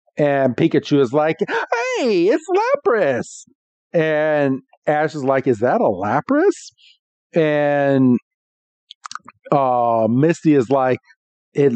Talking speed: 105 wpm